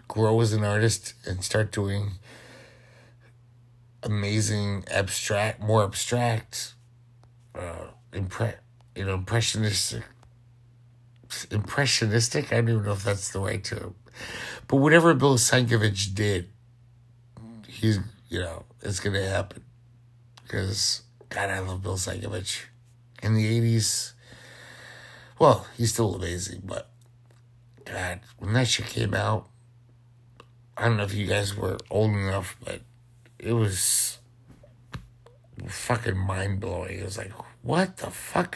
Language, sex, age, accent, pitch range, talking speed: English, male, 60-79, American, 105-120 Hz, 120 wpm